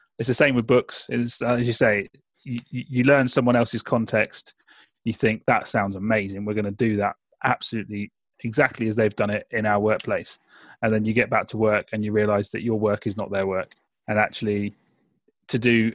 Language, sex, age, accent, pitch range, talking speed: English, male, 30-49, British, 110-120 Hz, 205 wpm